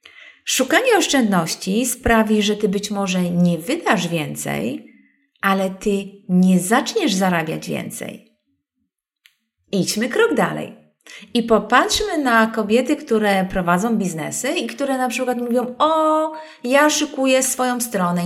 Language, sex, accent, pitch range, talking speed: Polish, female, native, 190-255 Hz, 120 wpm